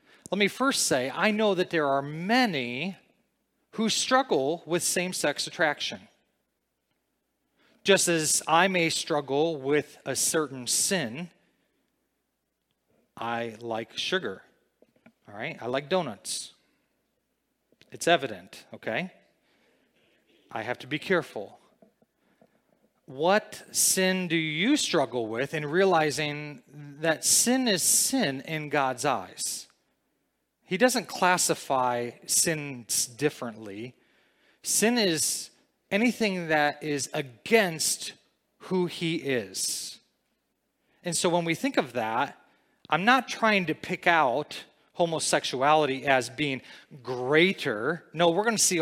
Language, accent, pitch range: English, American, 140-195 Hz